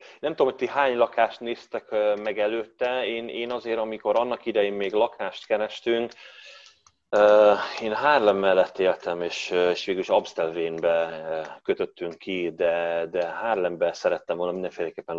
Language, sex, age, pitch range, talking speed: Hungarian, male, 30-49, 85-145 Hz, 140 wpm